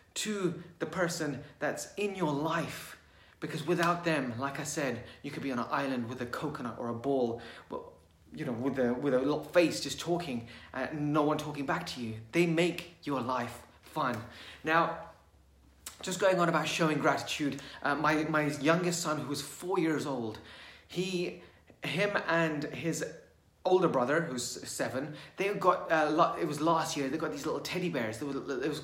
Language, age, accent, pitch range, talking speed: English, 30-49, British, 125-160 Hz, 190 wpm